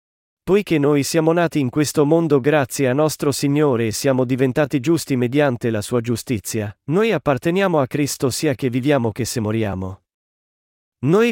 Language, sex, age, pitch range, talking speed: Italian, male, 40-59, 125-160 Hz, 160 wpm